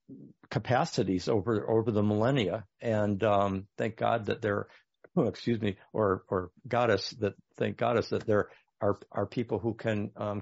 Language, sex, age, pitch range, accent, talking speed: English, male, 60-79, 110-140 Hz, American, 155 wpm